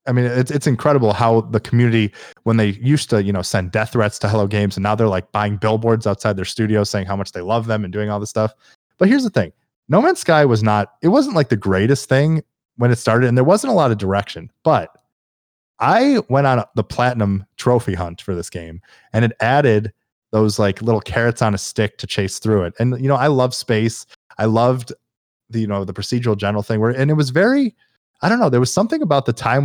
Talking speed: 245 wpm